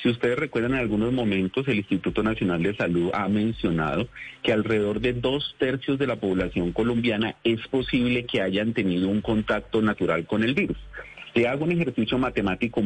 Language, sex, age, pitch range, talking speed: Spanish, male, 40-59, 110-140 Hz, 175 wpm